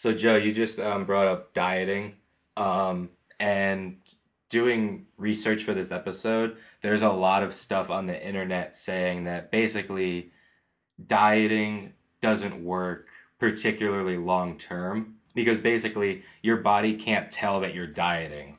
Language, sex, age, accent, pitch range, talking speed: English, male, 20-39, American, 90-105 Hz, 130 wpm